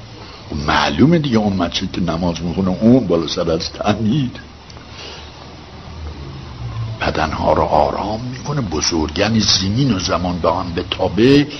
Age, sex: 60-79, male